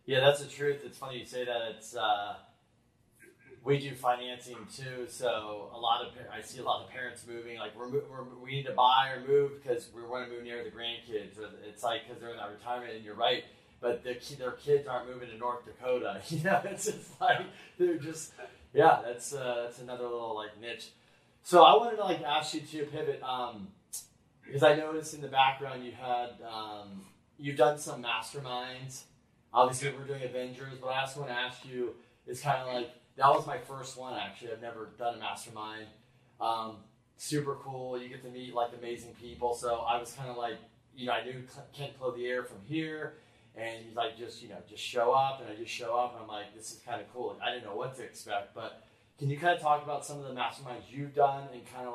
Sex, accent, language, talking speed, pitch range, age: male, American, English, 230 wpm, 120-140 Hz, 30-49